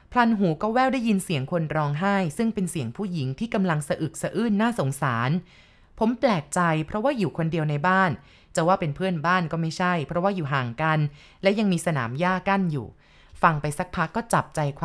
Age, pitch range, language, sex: 20-39, 155-195 Hz, Thai, female